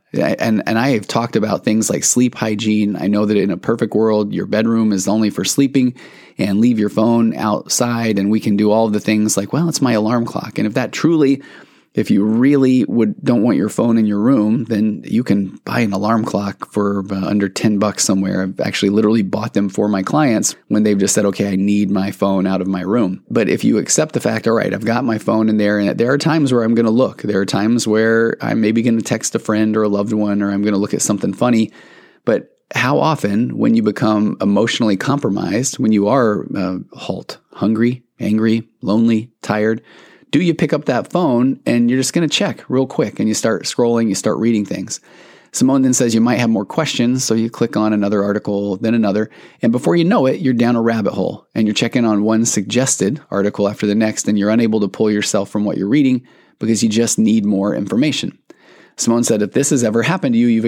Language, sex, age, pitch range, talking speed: English, male, 30-49, 105-115 Hz, 235 wpm